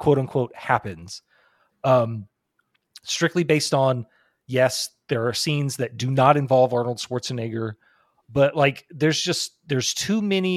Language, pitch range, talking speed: English, 115-150 Hz, 135 wpm